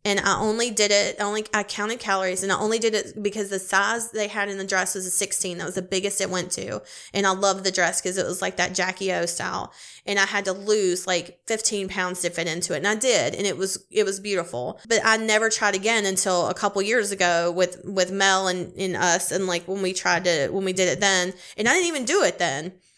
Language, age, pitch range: English, 20-39, 185-220 Hz